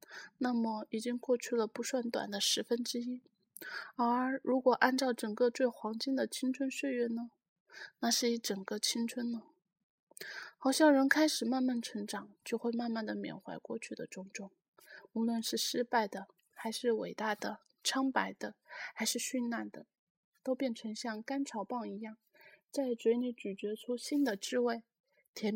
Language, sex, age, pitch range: Chinese, female, 20-39, 215-260 Hz